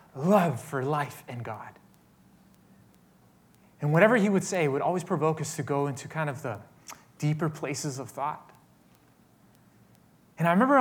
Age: 30-49